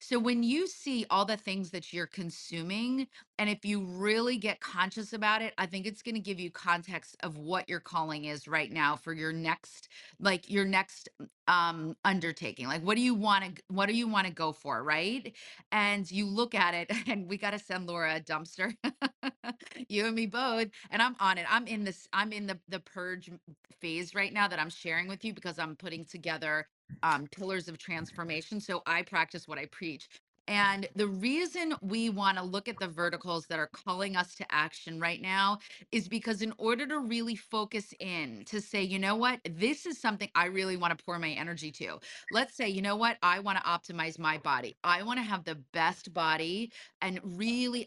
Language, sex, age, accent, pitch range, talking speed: English, female, 30-49, American, 170-215 Hz, 210 wpm